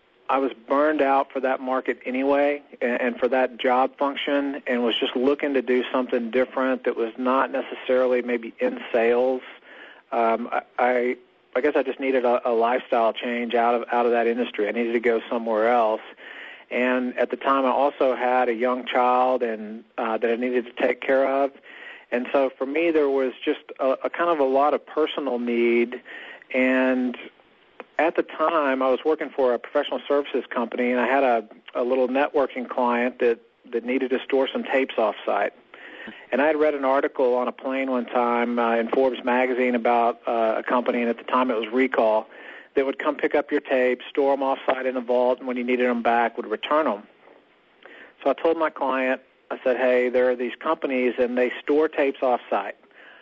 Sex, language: male, English